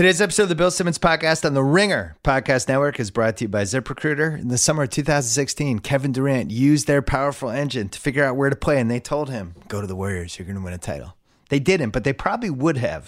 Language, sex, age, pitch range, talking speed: English, male, 30-49, 95-140 Hz, 255 wpm